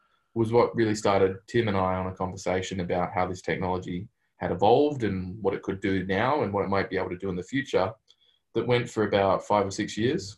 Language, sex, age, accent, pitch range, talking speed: English, male, 20-39, Australian, 95-110 Hz, 235 wpm